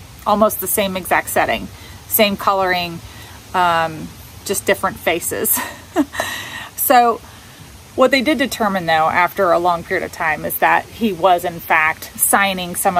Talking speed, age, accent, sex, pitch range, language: 145 wpm, 30-49, American, female, 165-195 Hz, English